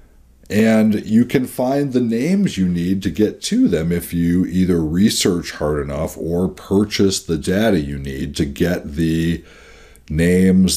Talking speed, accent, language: 155 wpm, American, English